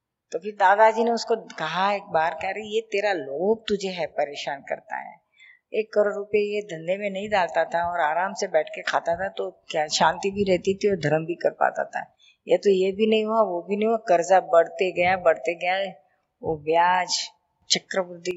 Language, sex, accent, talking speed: Hindi, female, native, 210 wpm